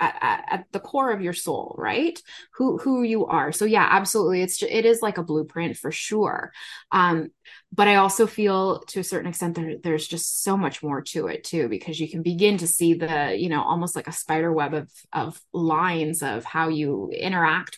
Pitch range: 160-205 Hz